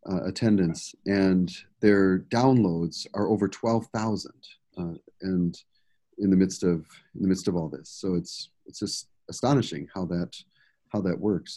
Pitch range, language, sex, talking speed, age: 95-120 Hz, English, male, 165 wpm, 40-59